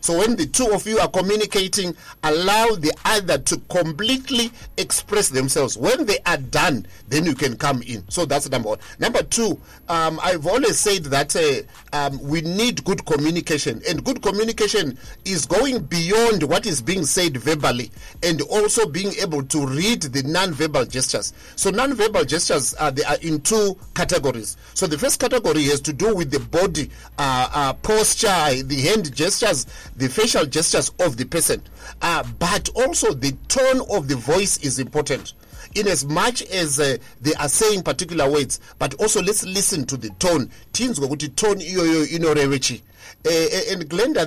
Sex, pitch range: male, 140-200 Hz